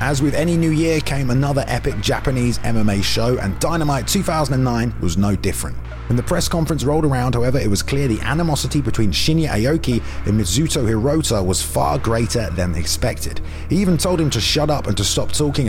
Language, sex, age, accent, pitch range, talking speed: English, male, 30-49, British, 105-145 Hz, 195 wpm